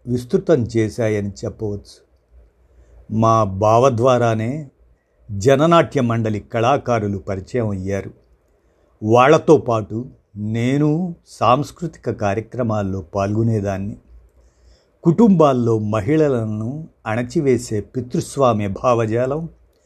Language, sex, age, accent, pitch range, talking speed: Telugu, male, 50-69, native, 100-135 Hz, 65 wpm